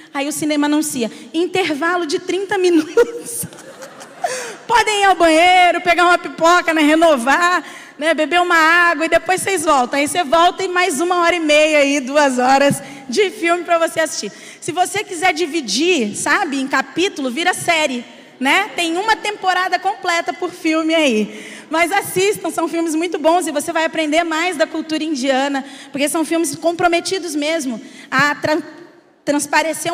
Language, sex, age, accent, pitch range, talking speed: Portuguese, female, 20-39, Brazilian, 280-345 Hz, 160 wpm